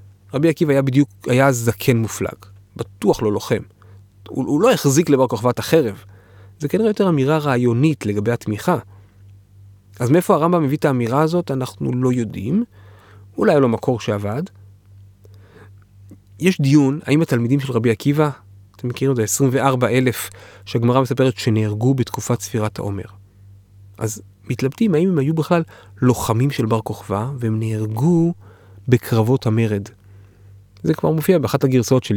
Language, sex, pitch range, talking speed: Hebrew, male, 100-130 Hz, 140 wpm